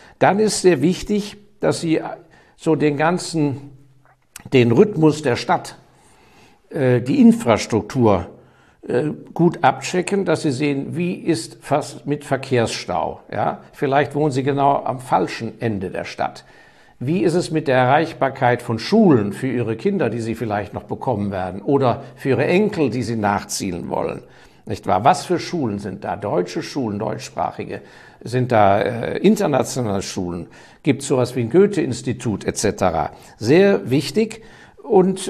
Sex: male